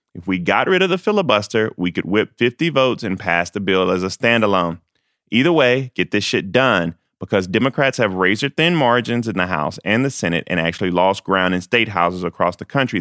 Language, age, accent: English, 30-49, American